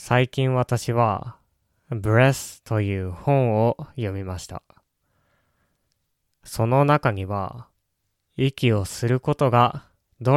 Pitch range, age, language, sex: 100-130 Hz, 20-39, Japanese, male